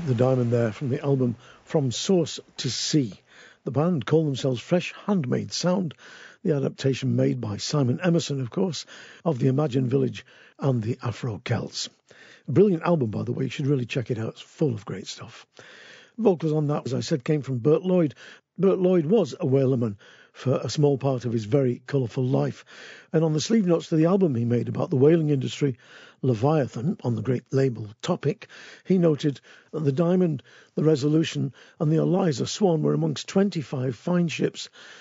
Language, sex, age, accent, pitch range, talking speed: English, male, 50-69, British, 125-170 Hz, 185 wpm